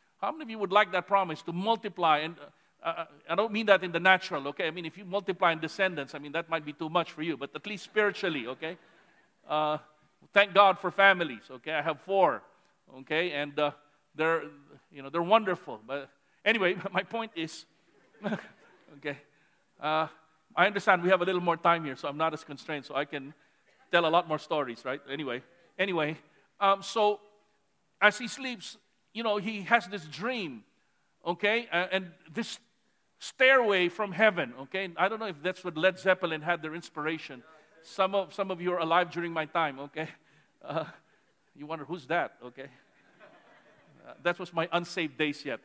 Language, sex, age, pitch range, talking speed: English, male, 50-69, 155-200 Hz, 190 wpm